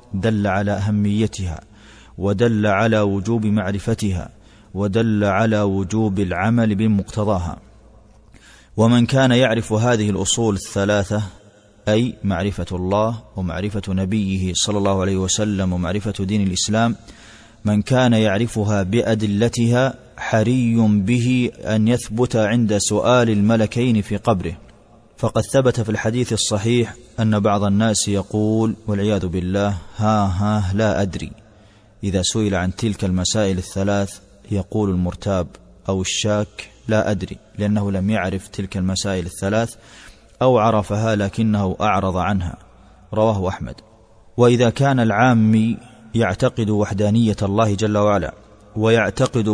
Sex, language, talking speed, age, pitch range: male, Arabic, 110 wpm, 30-49, 100-115 Hz